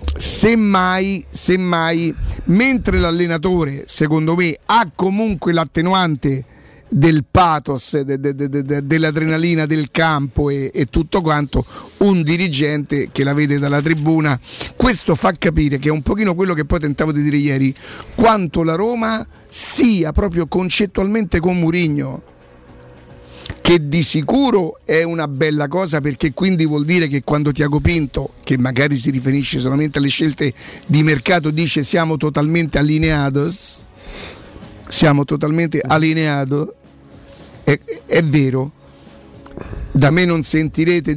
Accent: native